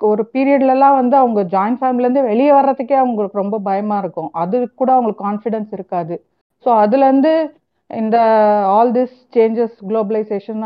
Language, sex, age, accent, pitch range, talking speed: Tamil, female, 40-59, native, 205-260 Hz, 135 wpm